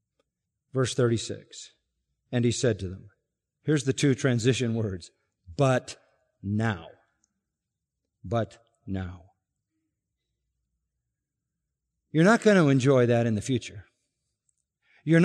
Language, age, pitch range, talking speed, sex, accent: English, 50-69, 125-195 Hz, 100 wpm, male, American